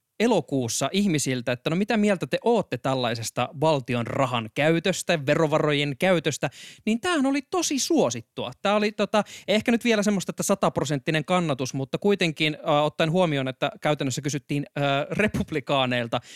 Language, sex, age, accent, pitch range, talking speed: Finnish, male, 20-39, native, 135-190 Hz, 140 wpm